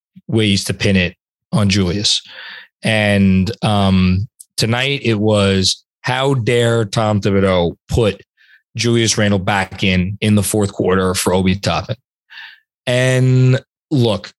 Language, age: English, 20-39